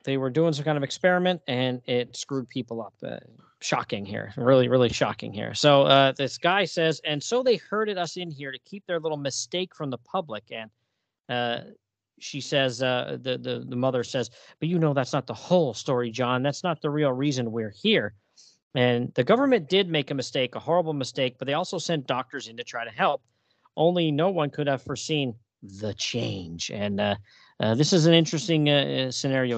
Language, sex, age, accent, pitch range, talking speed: English, male, 40-59, American, 120-160 Hz, 210 wpm